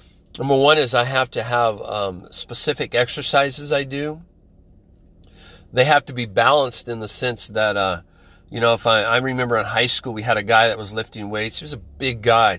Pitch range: 100-140 Hz